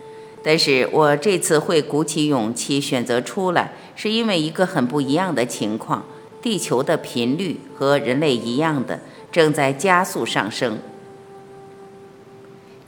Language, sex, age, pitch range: Chinese, female, 50-69, 135-185 Hz